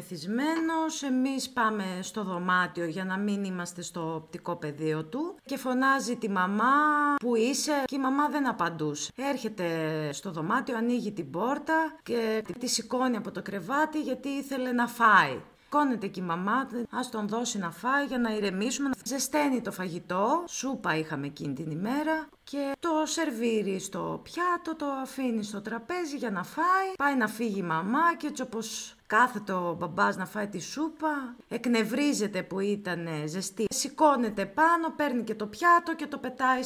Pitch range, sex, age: 190-270 Hz, female, 30-49